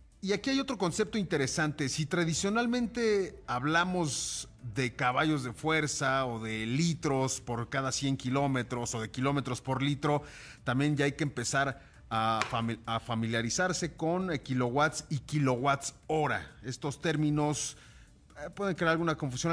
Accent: Mexican